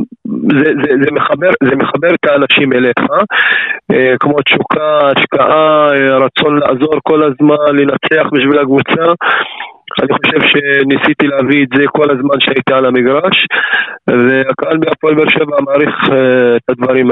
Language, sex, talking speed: Hebrew, male, 125 wpm